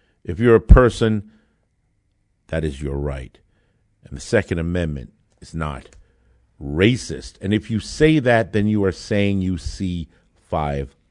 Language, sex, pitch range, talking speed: English, male, 85-110 Hz, 145 wpm